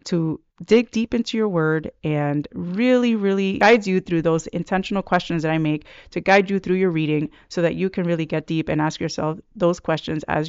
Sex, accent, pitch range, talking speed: female, American, 165-200 Hz, 210 wpm